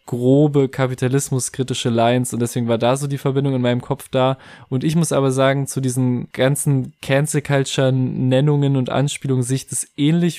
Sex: male